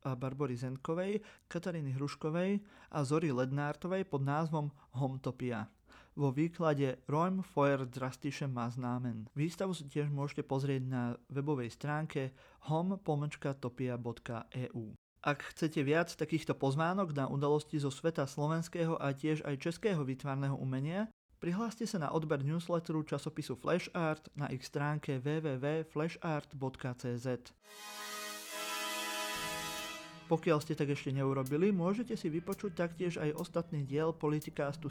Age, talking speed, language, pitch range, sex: 30-49, 115 wpm, Slovak, 140-175 Hz, male